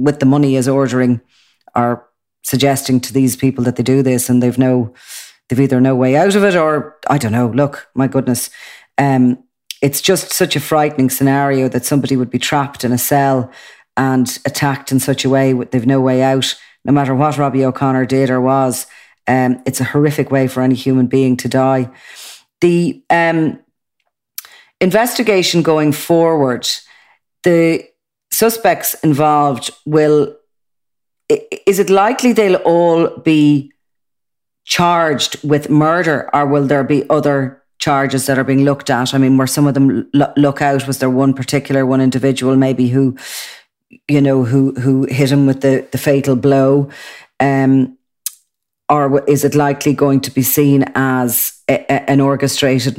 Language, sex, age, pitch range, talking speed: English, female, 40-59, 130-145 Hz, 165 wpm